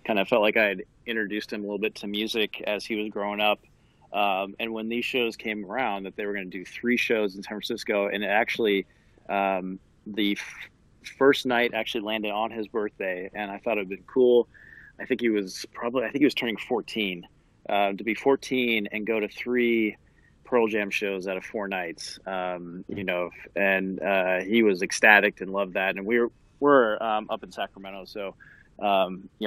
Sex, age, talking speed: male, 30-49, 210 wpm